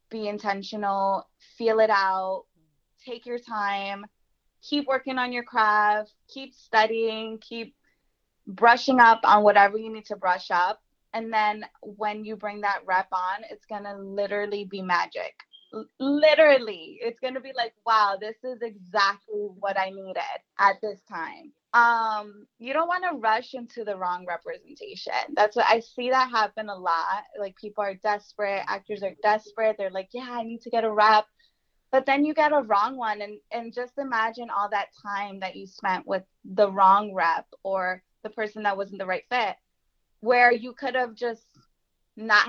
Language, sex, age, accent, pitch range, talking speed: English, female, 20-39, American, 200-240 Hz, 175 wpm